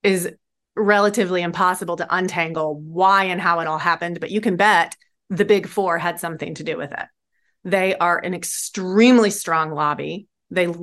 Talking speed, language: 170 wpm, English